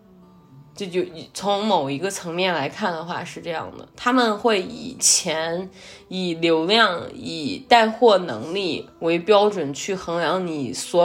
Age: 20-39